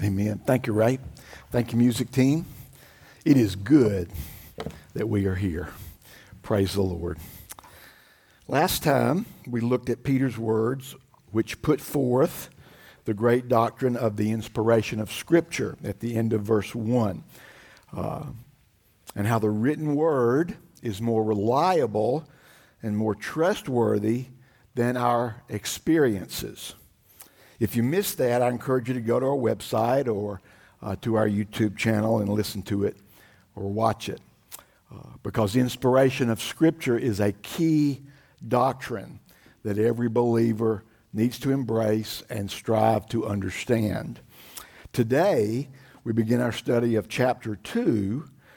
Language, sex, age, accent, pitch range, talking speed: English, male, 60-79, American, 105-125 Hz, 135 wpm